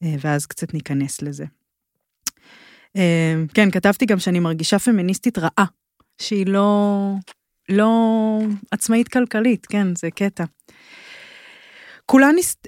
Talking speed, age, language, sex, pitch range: 90 wpm, 20-39, Hebrew, female, 170-215 Hz